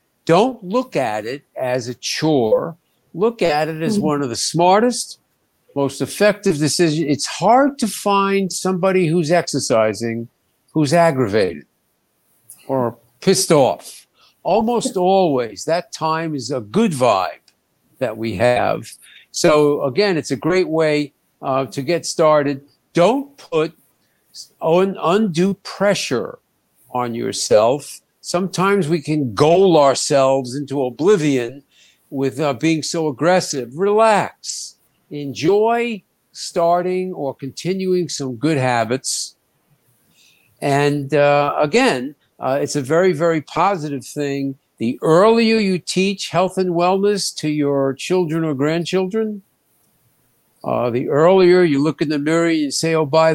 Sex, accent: male, American